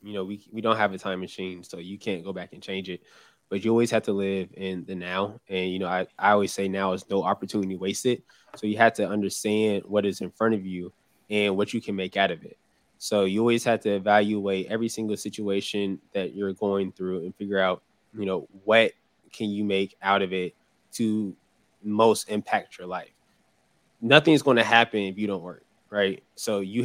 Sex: male